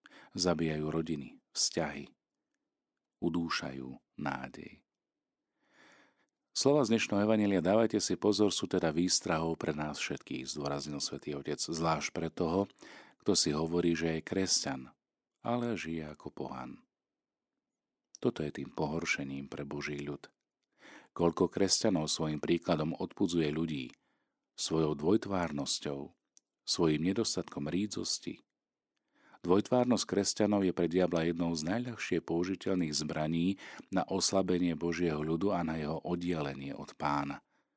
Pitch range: 75-95 Hz